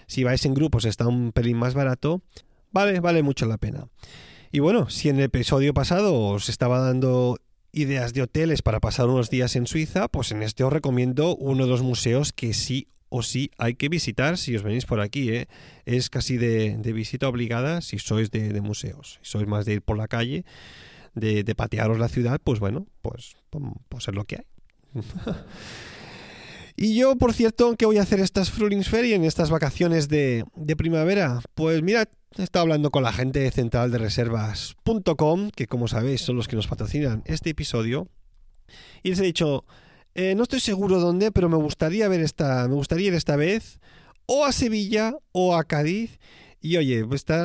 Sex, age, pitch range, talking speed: male, 30-49, 120-170 Hz, 190 wpm